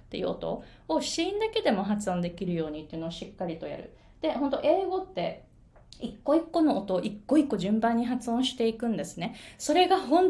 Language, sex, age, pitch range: Japanese, female, 20-39, 180-245 Hz